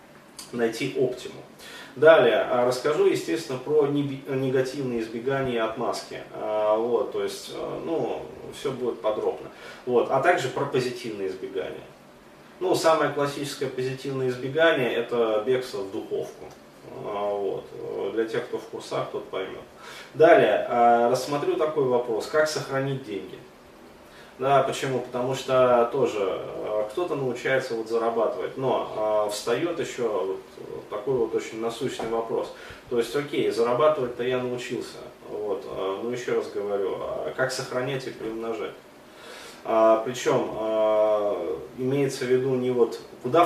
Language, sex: Russian, male